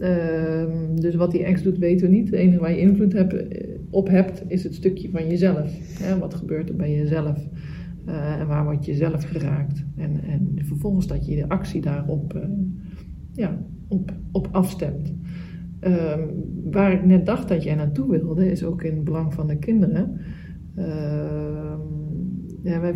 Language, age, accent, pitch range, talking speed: Dutch, 40-59, Dutch, 165-190 Hz, 160 wpm